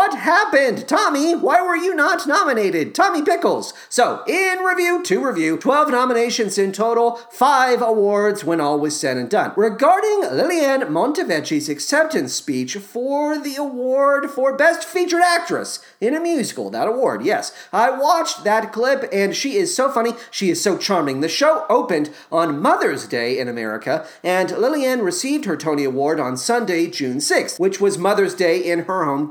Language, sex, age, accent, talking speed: English, male, 40-59, American, 170 wpm